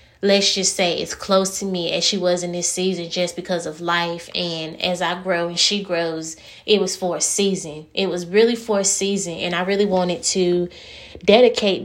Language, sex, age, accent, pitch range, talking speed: English, female, 20-39, American, 170-190 Hz, 210 wpm